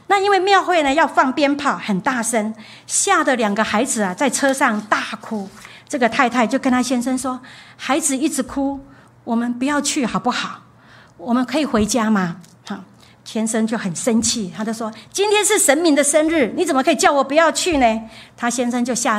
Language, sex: Chinese, female